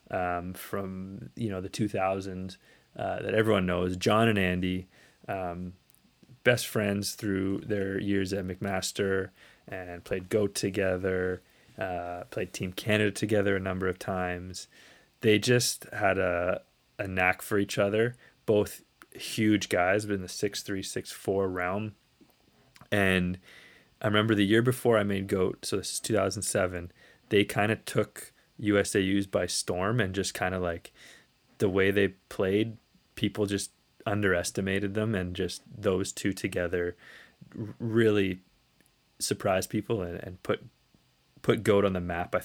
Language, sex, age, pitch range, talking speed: English, male, 20-39, 90-105 Hz, 155 wpm